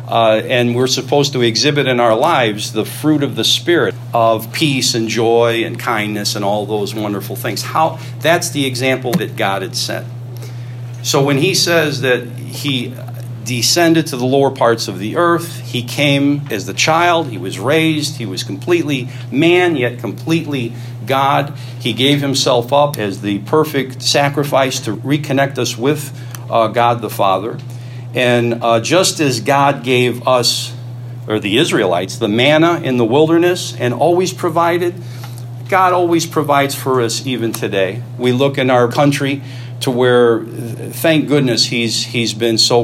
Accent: American